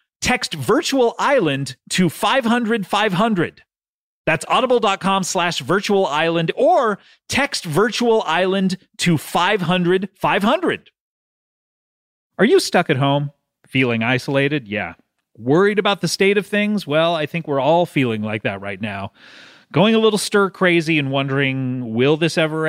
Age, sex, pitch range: 30-49, male, 140-205 Hz